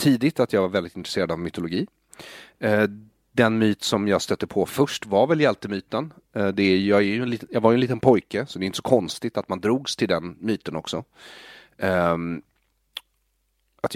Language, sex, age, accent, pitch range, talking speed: Swedish, male, 30-49, native, 95-115 Hz, 190 wpm